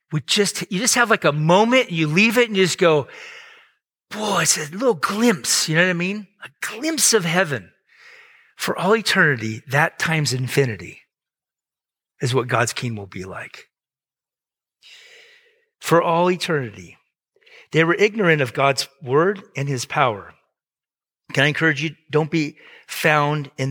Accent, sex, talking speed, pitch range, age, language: American, male, 155 wpm, 135-210 Hz, 40-59, English